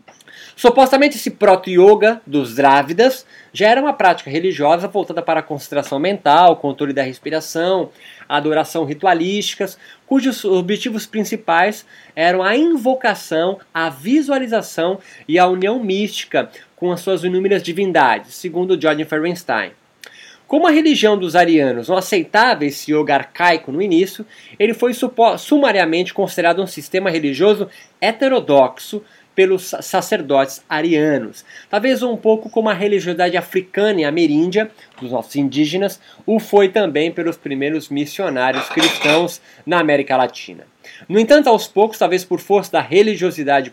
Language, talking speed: Portuguese, 130 wpm